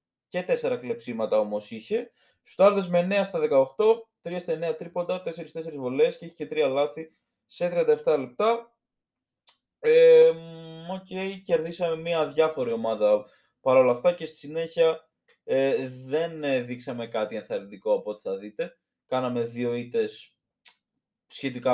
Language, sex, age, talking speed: Greek, male, 20-39, 130 wpm